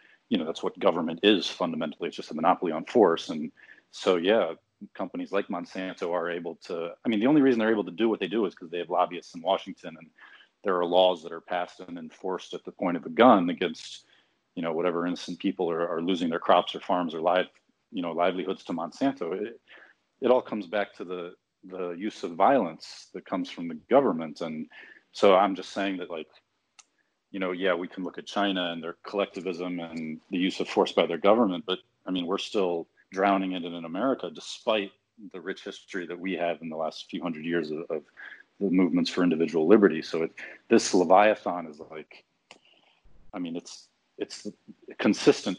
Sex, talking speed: male, 210 wpm